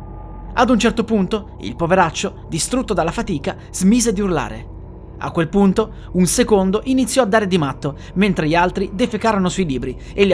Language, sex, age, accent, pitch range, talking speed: Italian, male, 30-49, native, 145-215 Hz, 175 wpm